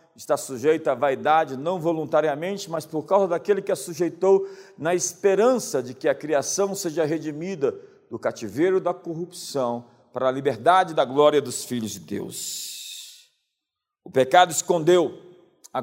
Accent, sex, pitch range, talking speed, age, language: Brazilian, male, 170-240 Hz, 145 wpm, 50-69, Portuguese